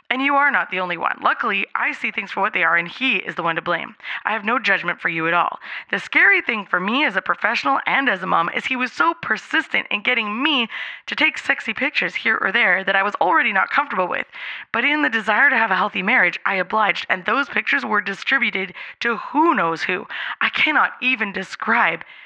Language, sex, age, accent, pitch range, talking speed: English, female, 20-39, American, 210-305 Hz, 235 wpm